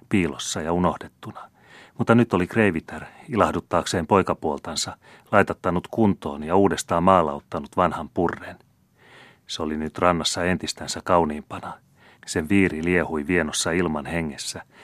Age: 30-49